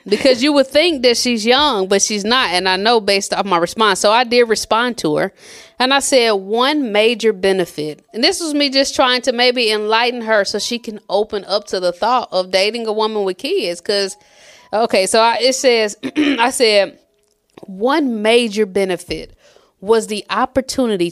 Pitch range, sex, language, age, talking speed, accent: 200-260 Hz, female, English, 30-49, 190 wpm, American